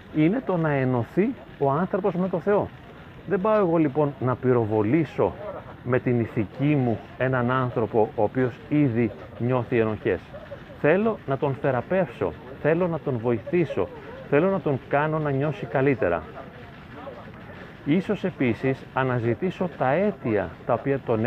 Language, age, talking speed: Greek, 40-59, 140 wpm